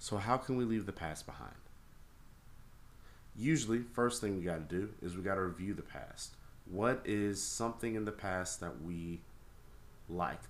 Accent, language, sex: American, English, male